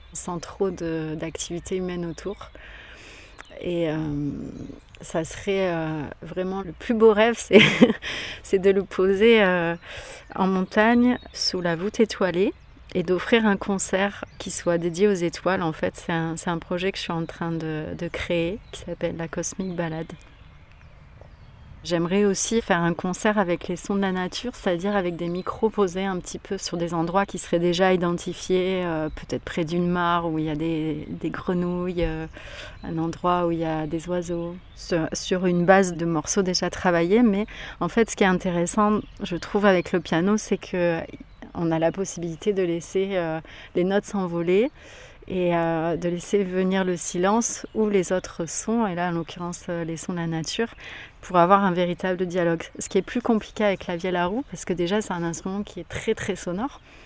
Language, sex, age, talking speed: French, female, 30-49, 190 wpm